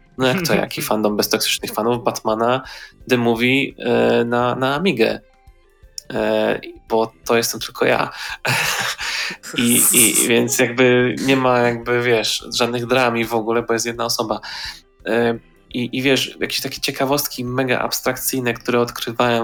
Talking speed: 140 wpm